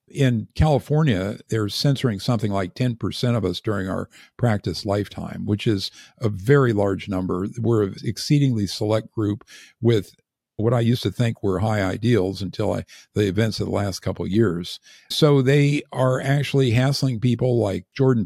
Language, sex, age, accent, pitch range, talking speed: English, male, 50-69, American, 100-125 Hz, 170 wpm